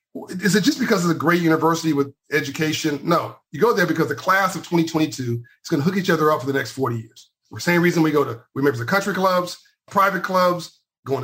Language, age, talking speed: English, 50-69, 245 wpm